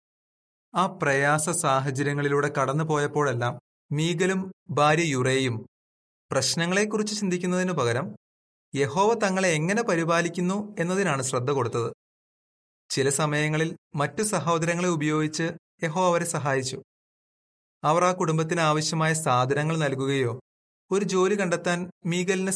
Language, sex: Malayalam, male